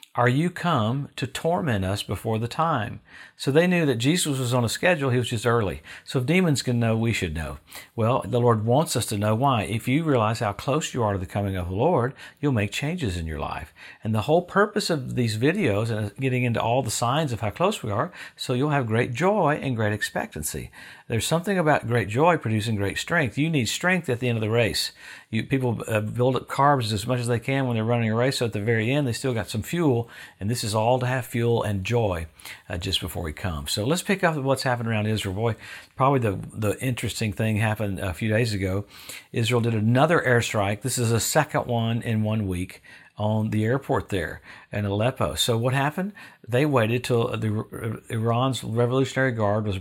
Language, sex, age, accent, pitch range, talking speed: English, male, 50-69, American, 105-130 Hz, 225 wpm